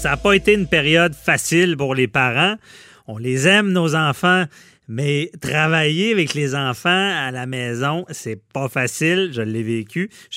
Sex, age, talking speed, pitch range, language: male, 30-49, 180 wpm, 125-175 Hz, French